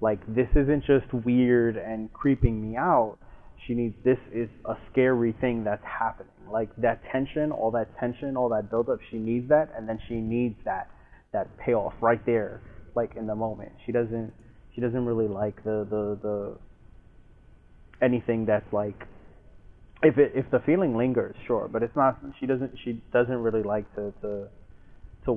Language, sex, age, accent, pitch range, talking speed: English, male, 20-39, American, 105-120 Hz, 175 wpm